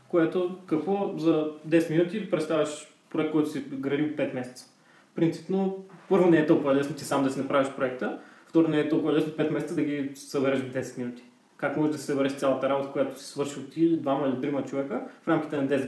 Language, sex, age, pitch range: Bulgarian, male, 20-39, 135-170 Hz